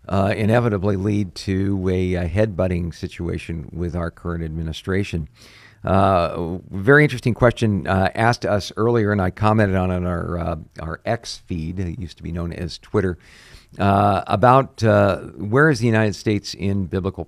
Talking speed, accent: 165 wpm, American